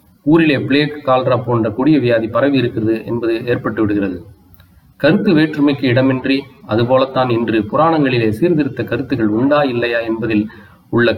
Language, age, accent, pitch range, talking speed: Tamil, 30-49, native, 110-145 Hz, 125 wpm